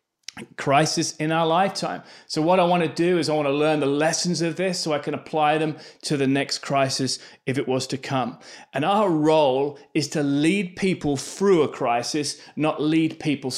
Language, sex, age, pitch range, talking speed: English, male, 30-49, 140-165 Hz, 205 wpm